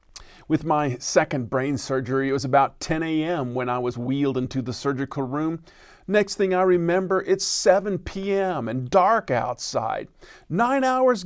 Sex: male